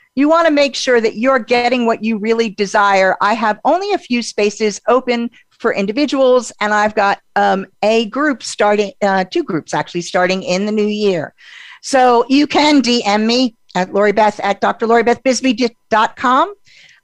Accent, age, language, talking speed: American, 50-69, English, 160 wpm